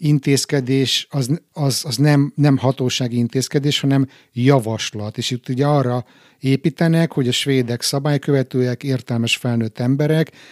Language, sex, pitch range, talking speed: Hungarian, male, 120-145 Hz, 120 wpm